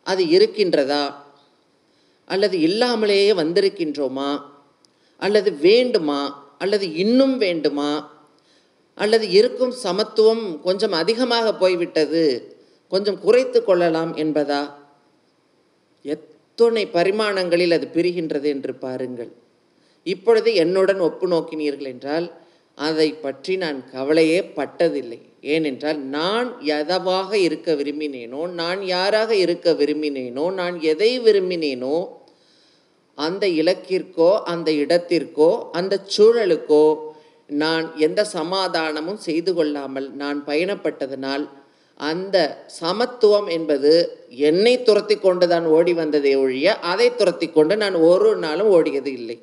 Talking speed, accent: 95 wpm, native